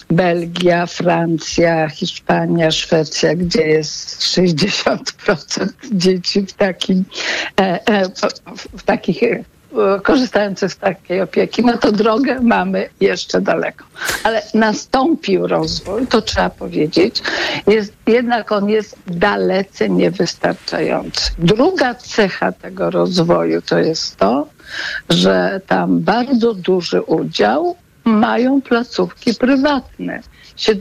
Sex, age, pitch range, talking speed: female, 60-79, 180-230 Hz, 90 wpm